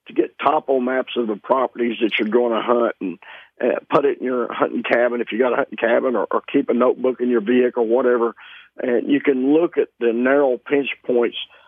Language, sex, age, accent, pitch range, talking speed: English, male, 50-69, American, 120-135 Hz, 225 wpm